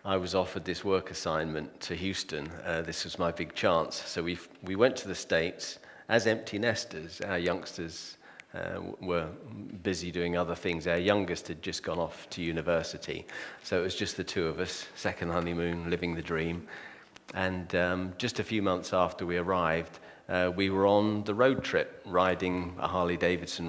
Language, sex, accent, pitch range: English, male, British, 85-95 Hz